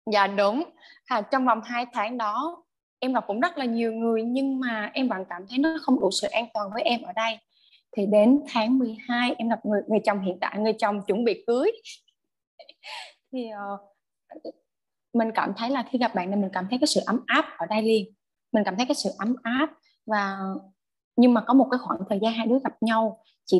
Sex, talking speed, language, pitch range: female, 225 wpm, Vietnamese, 205-265 Hz